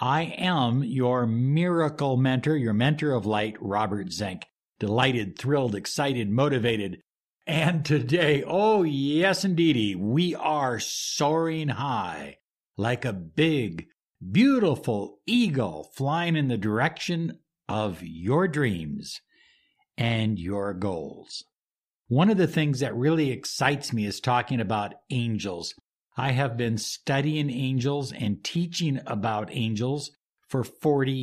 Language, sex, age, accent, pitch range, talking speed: English, male, 60-79, American, 120-160 Hz, 120 wpm